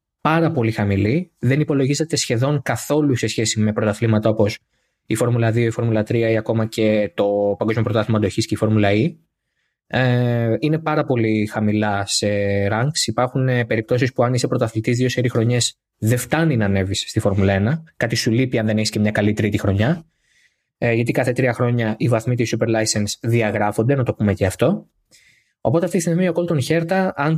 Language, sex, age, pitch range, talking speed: Greek, male, 20-39, 110-150 Hz, 180 wpm